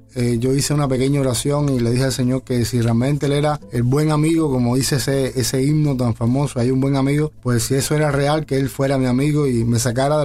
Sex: male